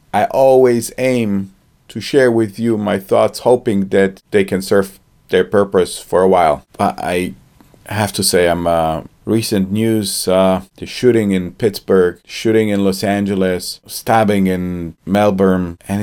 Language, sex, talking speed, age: English, male, 155 wpm, 40-59